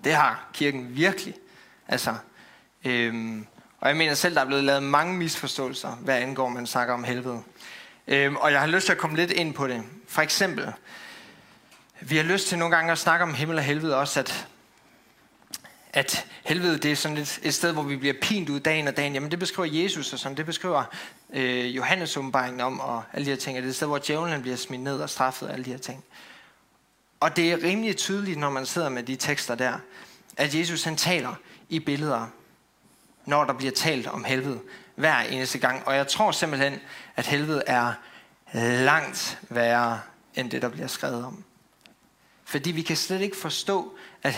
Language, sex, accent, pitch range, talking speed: Danish, male, native, 130-170 Hz, 200 wpm